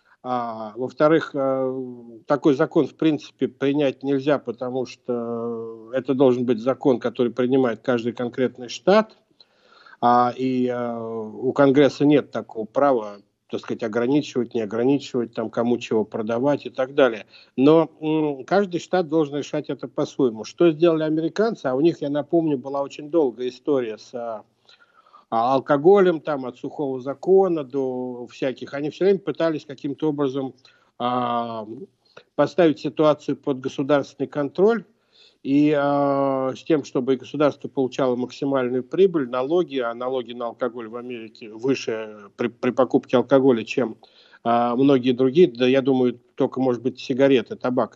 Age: 60-79